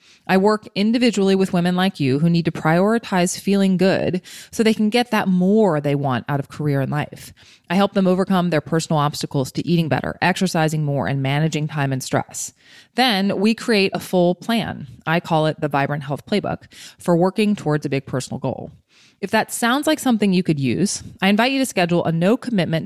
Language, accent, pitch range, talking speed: English, American, 145-195 Hz, 205 wpm